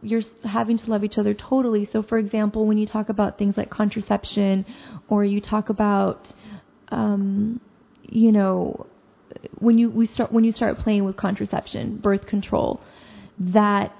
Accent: American